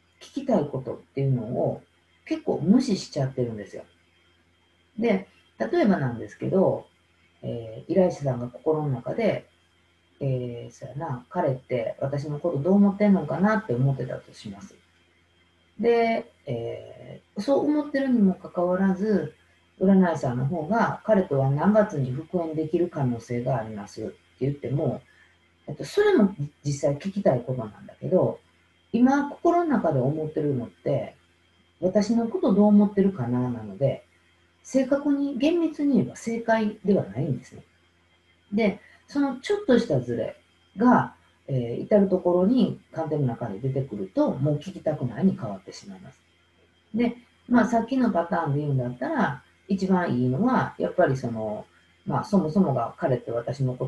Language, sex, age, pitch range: Japanese, female, 40-59, 125-205 Hz